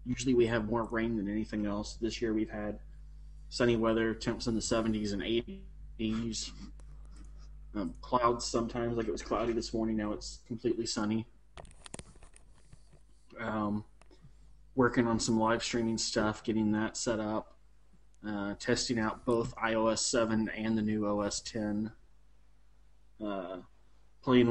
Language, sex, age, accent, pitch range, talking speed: English, male, 20-39, American, 105-120 Hz, 135 wpm